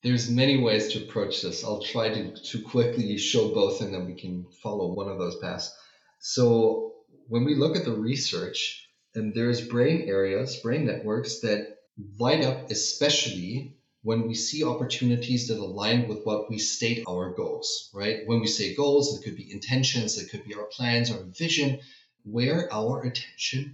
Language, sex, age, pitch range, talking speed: English, male, 30-49, 110-135 Hz, 175 wpm